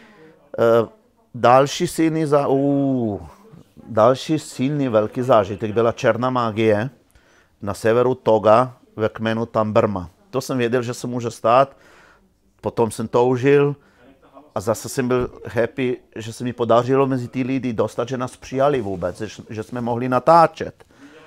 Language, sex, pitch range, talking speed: Czech, male, 110-130 Hz, 125 wpm